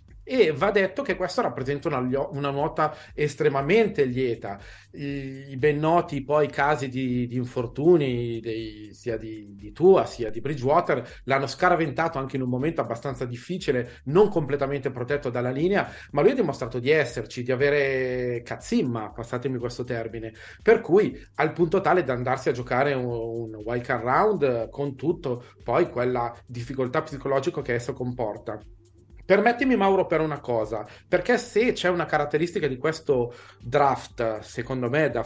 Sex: male